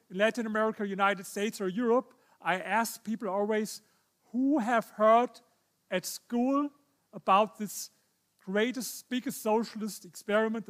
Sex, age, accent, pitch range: male, 40-59, German, 195-230 Hz